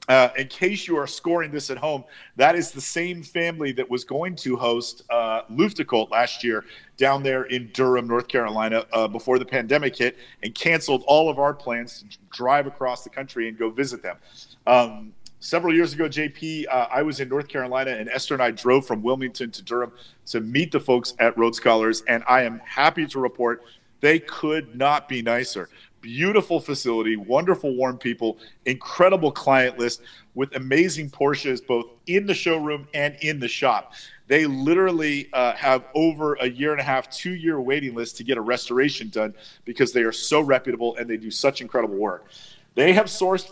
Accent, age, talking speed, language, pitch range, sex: American, 40-59, 190 wpm, English, 120-155 Hz, male